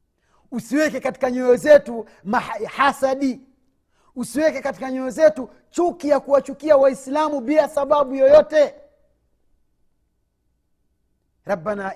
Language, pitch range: Swahili, 205-300 Hz